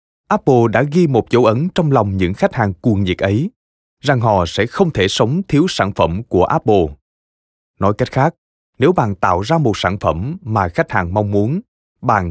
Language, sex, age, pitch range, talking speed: Vietnamese, male, 20-39, 90-140 Hz, 200 wpm